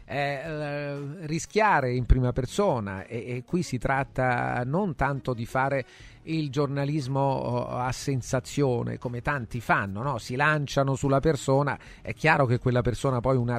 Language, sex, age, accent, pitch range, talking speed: Italian, male, 40-59, native, 125-145 Hz, 140 wpm